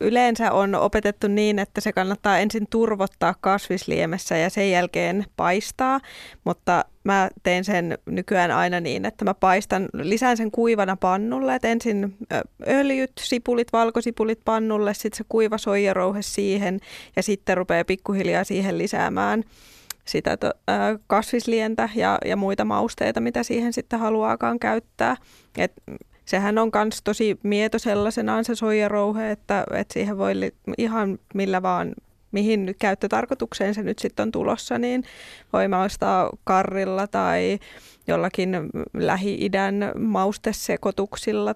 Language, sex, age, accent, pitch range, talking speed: Finnish, female, 20-39, native, 190-225 Hz, 125 wpm